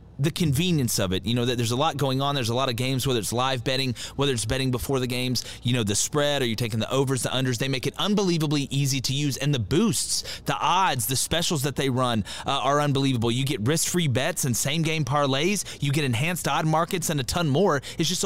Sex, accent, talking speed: male, American, 255 wpm